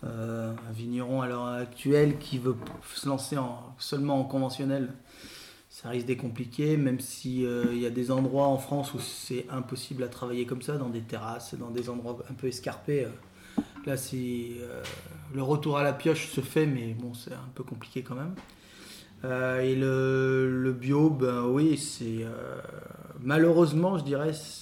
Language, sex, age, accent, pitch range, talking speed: French, male, 30-49, French, 125-145 Hz, 180 wpm